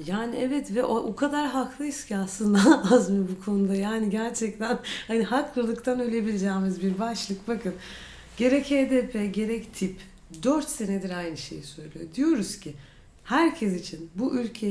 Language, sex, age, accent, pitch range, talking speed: Turkish, female, 40-59, native, 175-250 Hz, 145 wpm